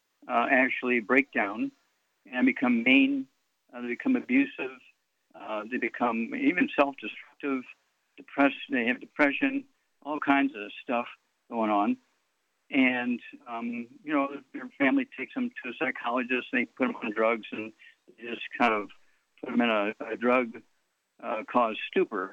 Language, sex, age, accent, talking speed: English, male, 60-79, American, 150 wpm